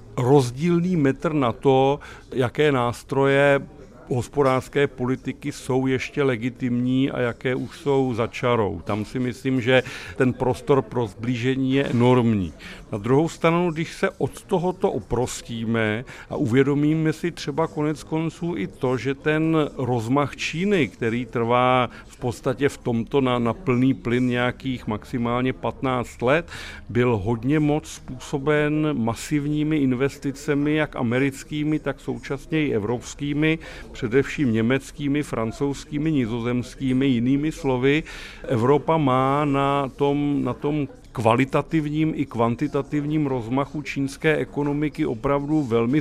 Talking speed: 120 wpm